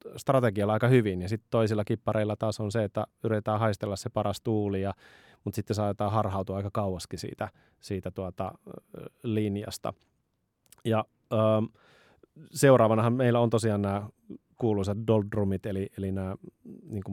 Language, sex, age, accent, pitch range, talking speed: Finnish, male, 30-49, native, 100-115 Hz, 140 wpm